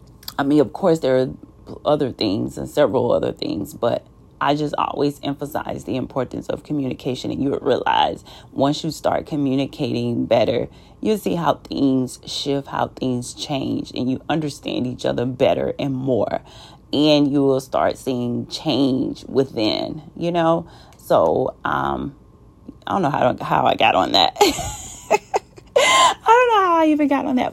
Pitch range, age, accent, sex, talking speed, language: 130-180 Hz, 30-49, American, female, 155 wpm, English